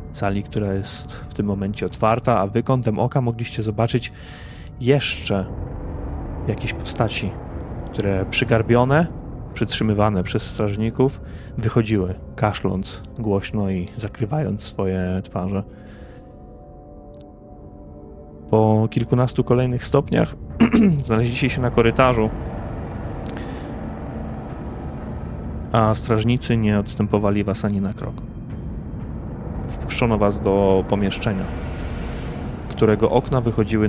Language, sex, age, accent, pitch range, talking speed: Polish, male, 30-49, native, 95-115 Hz, 90 wpm